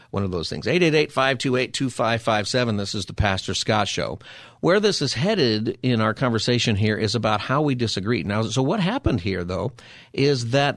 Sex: male